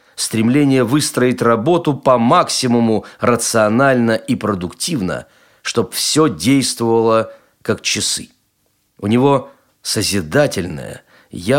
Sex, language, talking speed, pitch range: male, Russian, 90 wpm, 105-135 Hz